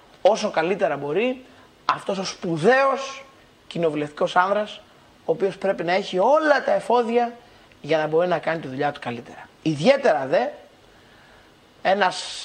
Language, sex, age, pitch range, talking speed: Greek, male, 30-49, 160-210 Hz, 135 wpm